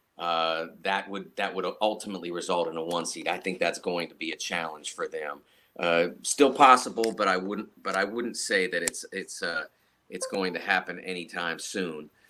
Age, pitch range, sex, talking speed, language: 40-59, 95-120 Hz, male, 200 wpm, English